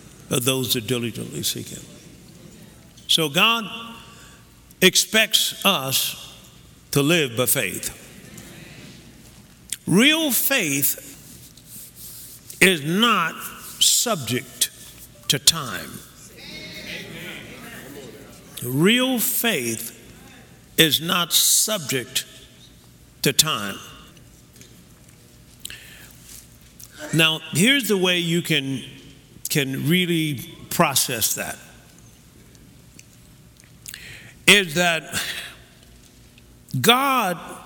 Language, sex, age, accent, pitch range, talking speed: English, male, 60-79, American, 130-195 Hz, 65 wpm